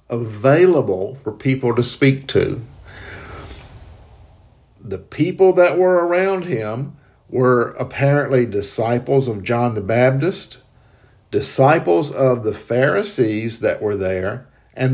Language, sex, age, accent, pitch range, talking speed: English, male, 50-69, American, 110-140 Hz, 110 wpm